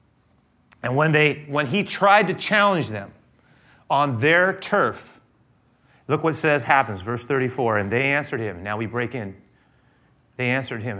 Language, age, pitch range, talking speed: English, 30-49, 115-175 Hz, 160 wpm